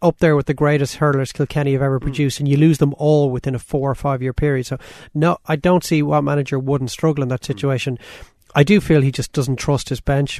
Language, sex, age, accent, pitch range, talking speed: English, male, 30-49, Irish, 135-155 Hz, 250 wpm